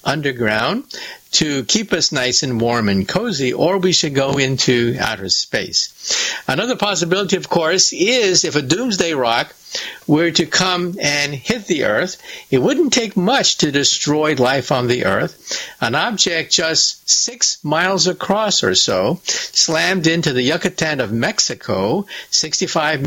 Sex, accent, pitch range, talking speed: male, American, 150-200 Hz, 150 wpm